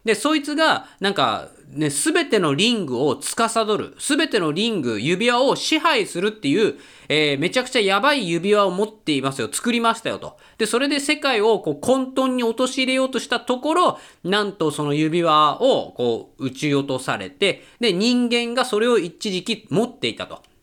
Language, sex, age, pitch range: Japanese, male, 20-39, 170-245 Hz